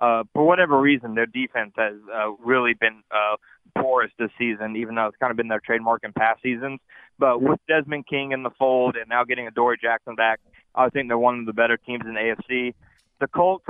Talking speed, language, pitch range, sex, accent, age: 225 wpm, English, 115-135 Hz, male, American, 30-49